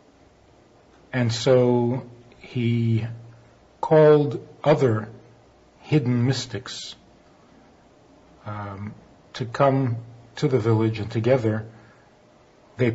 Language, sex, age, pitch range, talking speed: English, male, 50-69, 110-125 Hz, 75 wpm